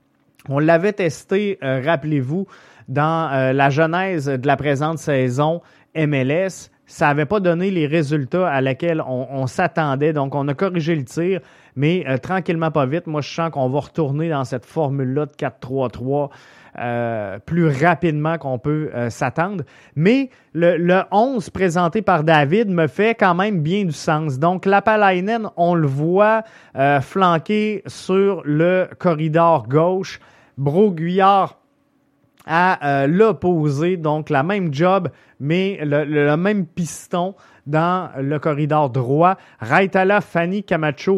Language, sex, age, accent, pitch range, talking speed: French, male, 30-49, Canadian, 140-180 Hz, 145 wpm